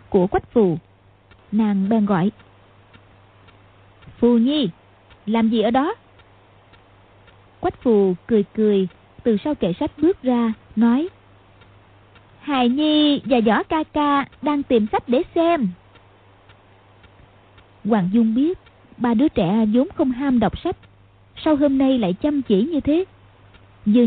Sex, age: female, 20-39